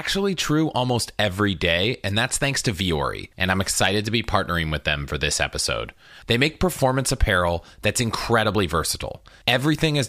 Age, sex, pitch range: 20-39, male, 95-130 Hz